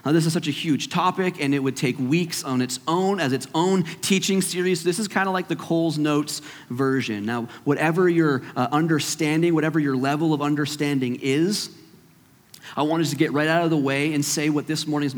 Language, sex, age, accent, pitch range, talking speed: English, male, 30-49, American, 130-165 Hz, 220 wpm